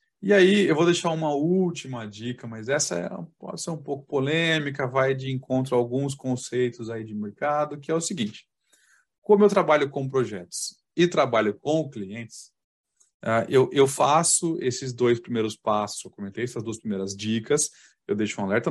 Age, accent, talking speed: 20-39, Brazilian, 175 wpm